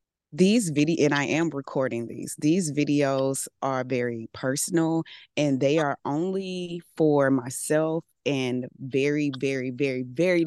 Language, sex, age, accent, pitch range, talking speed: English, female, 20-39, American, 130-155 Hz, 130 wpm